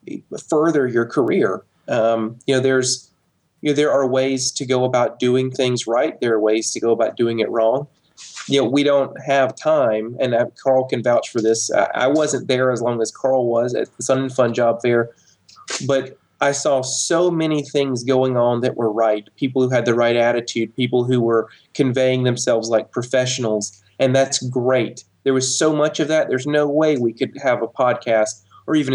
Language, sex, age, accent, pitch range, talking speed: English, male, 30-49, American, 120-140 Hz, 205 wpm